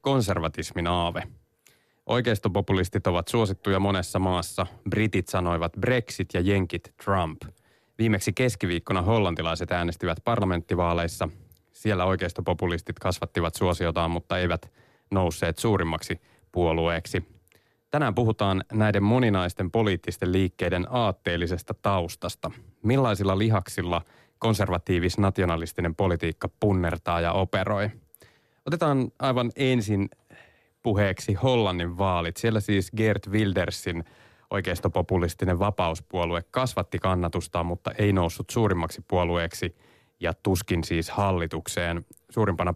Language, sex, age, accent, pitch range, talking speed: Finnish, male, 20-39, native, 85-110 Hz, 95 wpm